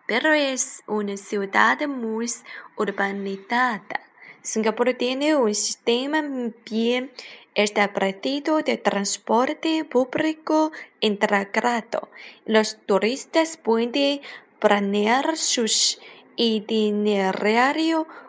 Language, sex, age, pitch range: Chinese, female, 20-39, 210-270 Hz